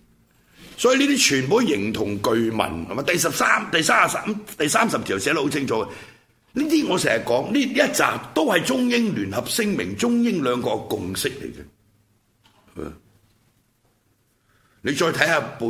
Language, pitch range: Chinese, 100-145 Hz